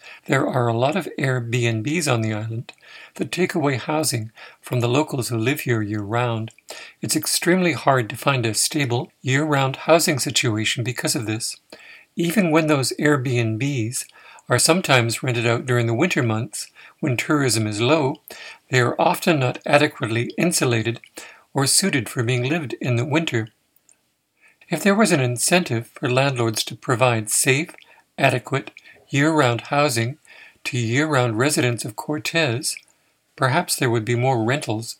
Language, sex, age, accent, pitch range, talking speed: English, male, 60-79, American, 120-155 Hz, 155 wpm